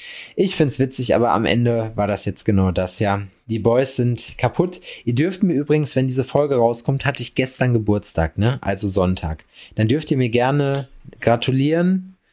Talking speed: 185 wpm